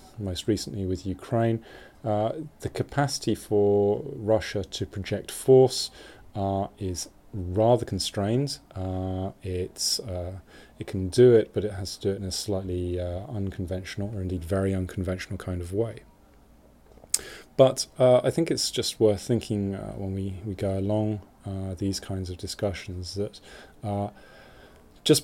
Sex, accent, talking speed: male, British, 150 wpm